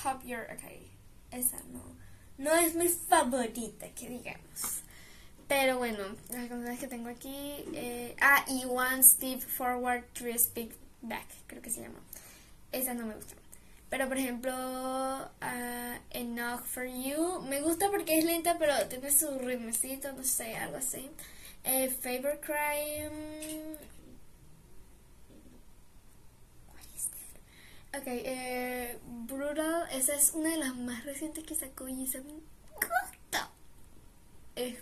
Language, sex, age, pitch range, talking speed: English, female, 10-29, 245-300 Hz, 130 wpm